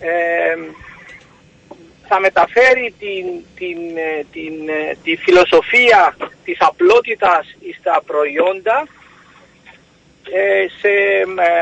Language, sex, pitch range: Greek, male, 185-310 Hz